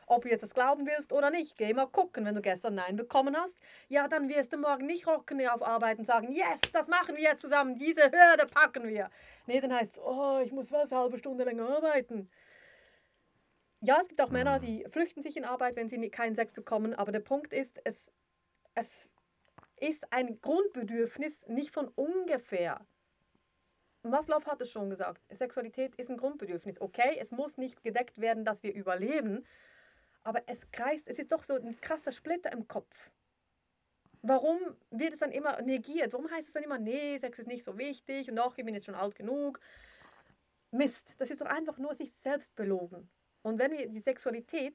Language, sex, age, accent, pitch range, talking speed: German, female, 30-49, German, 225-295 Hz, 195 wpm